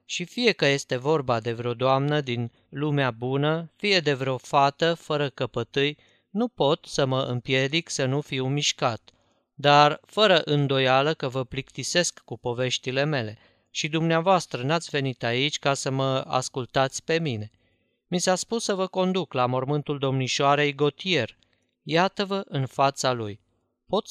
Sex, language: male, Romanian